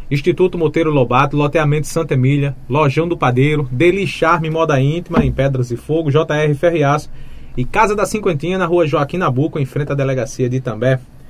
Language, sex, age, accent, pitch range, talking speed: Portuguese, male, 20-39, Brazilian, 130-160 Hz, 175 wpm